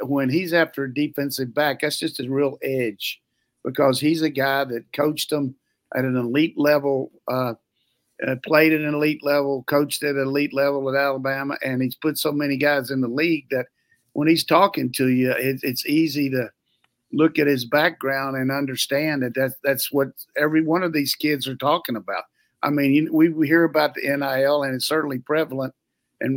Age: 50-69